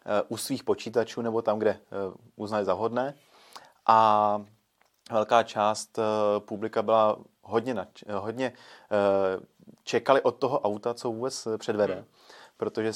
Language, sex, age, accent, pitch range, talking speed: Czech, male, 30-49, native, 110-130 Hz, 115 wpm